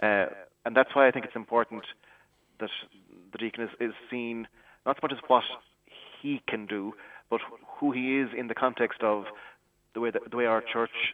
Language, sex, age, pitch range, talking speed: English, male, 30-49, 105-125 Hz, 195 wpm